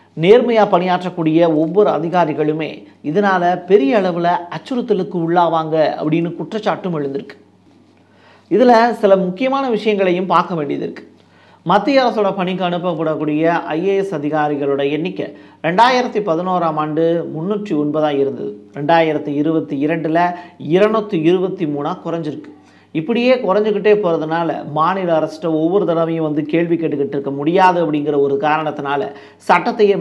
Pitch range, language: 150-185 Hz, Tamil